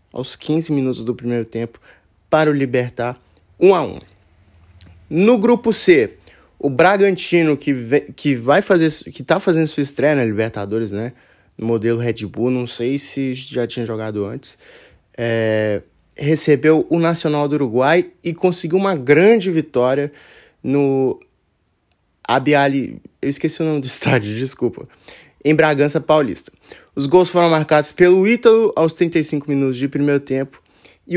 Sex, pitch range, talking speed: male, 125-160 Hz, 140 wpm